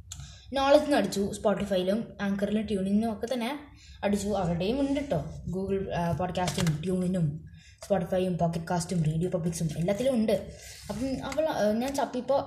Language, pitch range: Malayalam, 185-255 Hz